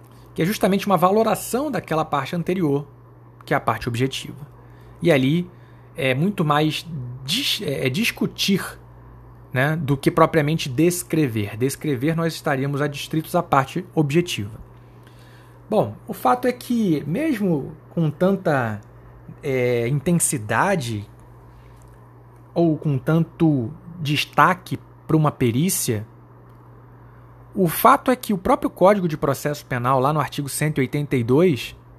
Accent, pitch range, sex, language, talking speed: Brazilian, 125-170 Hz, male, Portuguese, 115 wpm